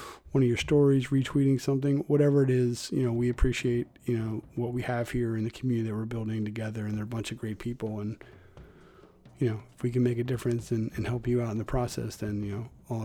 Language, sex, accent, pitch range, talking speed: English, male, American, 115-140 Hz, 250 wpm